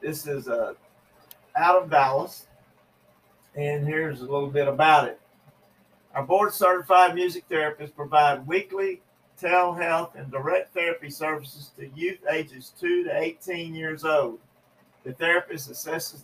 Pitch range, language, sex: 135-170 Hz, English, male